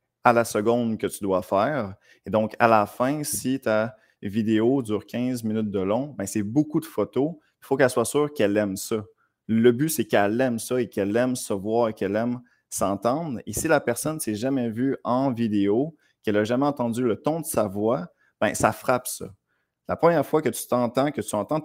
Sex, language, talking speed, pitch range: male, French, 220 wpm, 105-130 Hz